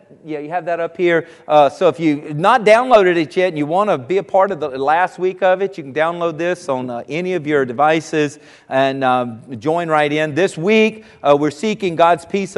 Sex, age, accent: male, 50-69, American